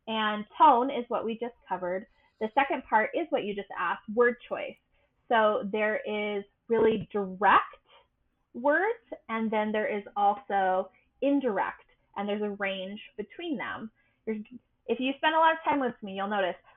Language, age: English, 20-39